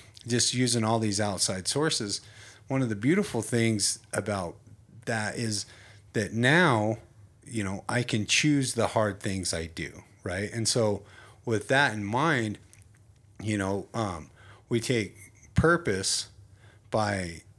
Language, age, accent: English, 30-49, American